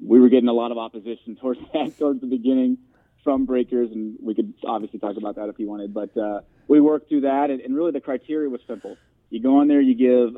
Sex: male